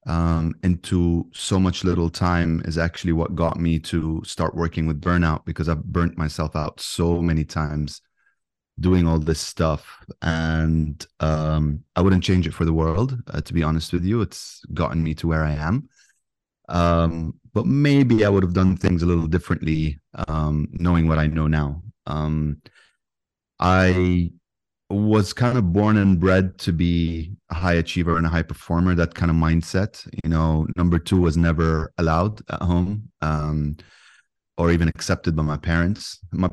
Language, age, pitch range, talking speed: English, 30-49, 80-90 Hz, 170 wpm